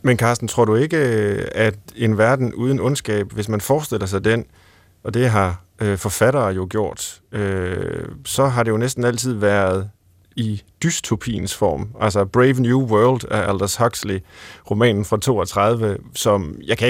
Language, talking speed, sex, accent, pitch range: Danish, 155 wpm, male, native, 100-130 Hz